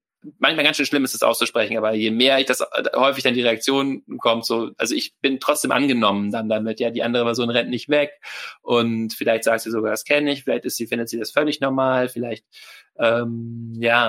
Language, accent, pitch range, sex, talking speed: German, German, 110-130 Hz, male, 215 wpm